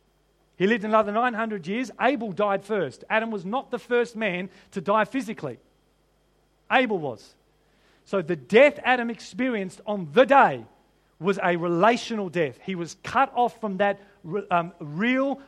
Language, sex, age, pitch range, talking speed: English, male, 40-59, 195-250 Hz, 145 wpm